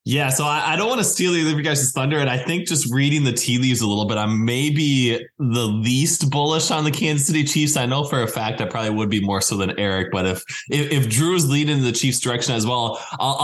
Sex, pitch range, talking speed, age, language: male, 100-130 Hz, 265 wpm, 20-39, English